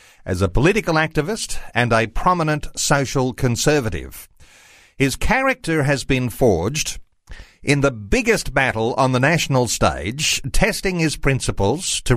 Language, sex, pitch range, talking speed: English, male, 115-150 Hz, 130 wpm